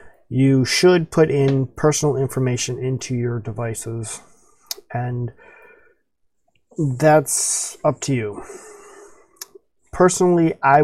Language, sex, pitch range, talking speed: English, male, 125-155 Hz, 90 wpm